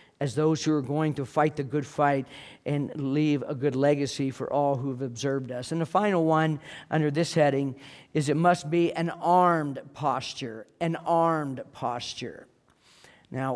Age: 50-69